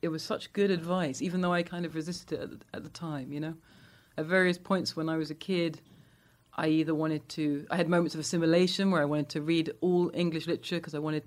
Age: 40-59